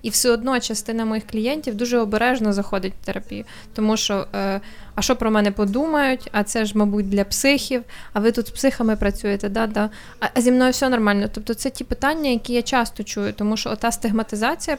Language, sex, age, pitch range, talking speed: Ukrainian, female, 20-39, 210-245 Hz, 200 wpm